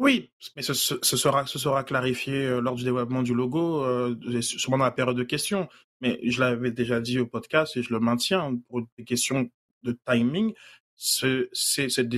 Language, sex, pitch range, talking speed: French, male, 120-130 Hz, 185 wpm